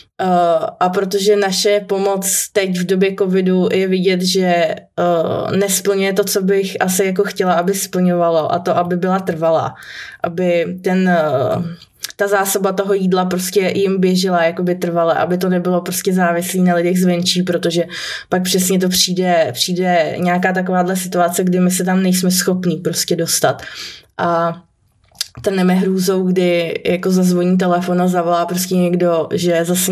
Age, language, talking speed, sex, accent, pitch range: 20-39, Czech, 160 wpm, female, native, 175-195 Hz